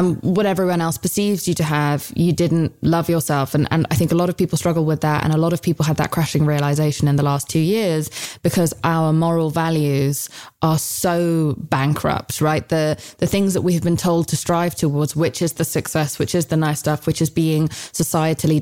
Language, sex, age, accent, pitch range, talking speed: English, female, 20-39, British, 150-175 Hz, 220 wpm